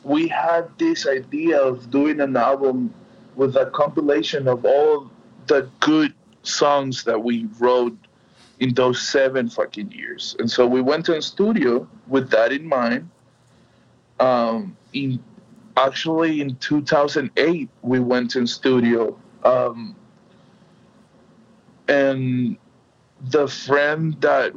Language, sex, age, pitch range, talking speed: English, male, 20-39, 125-150 Hz, 120 wpm